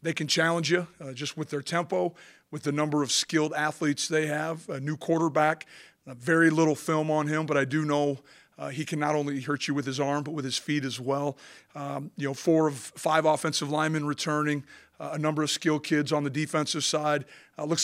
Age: 40-59